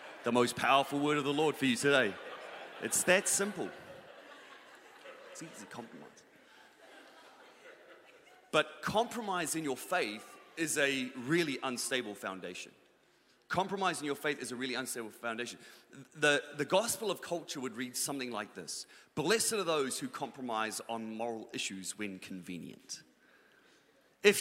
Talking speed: 135 wpm